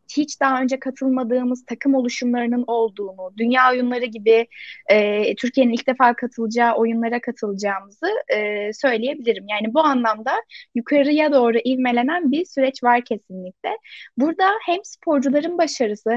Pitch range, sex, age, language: 230-280 Hz, female, 10-29, Turkish